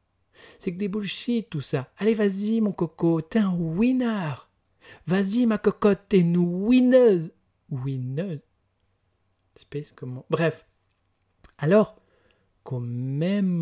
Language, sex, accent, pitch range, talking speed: French, male, French, 100-160 Hz, 110 wpm